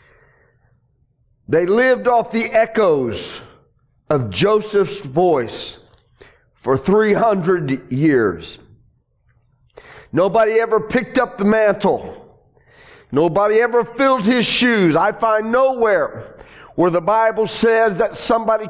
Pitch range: 175-230 Hz